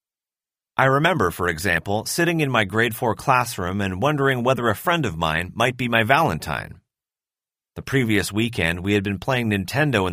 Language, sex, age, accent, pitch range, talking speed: English, male, 30-49, American, 95-130 Hz, 180 wpm